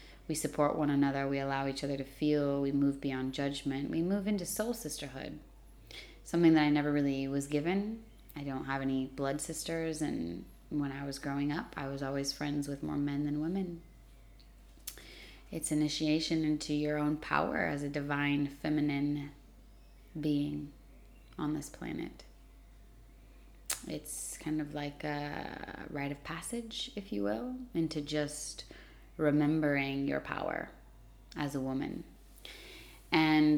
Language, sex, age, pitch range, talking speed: English, female, 20-39, 140-150 Hz, 145 wpm